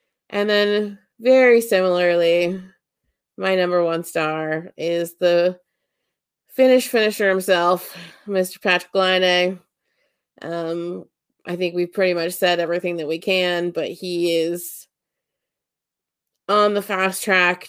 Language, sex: English, female